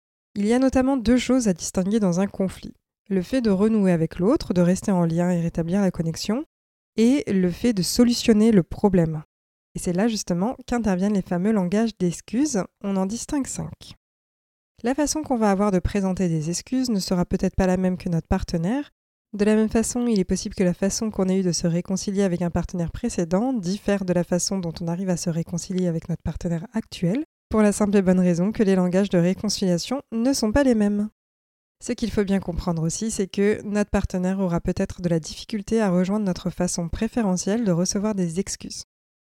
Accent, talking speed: French, 210 wpm